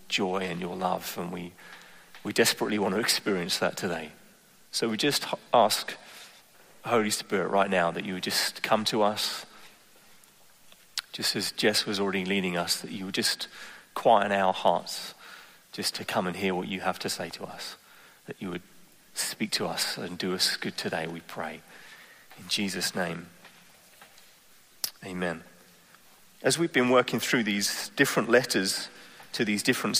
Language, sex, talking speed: English, male, 165 wpm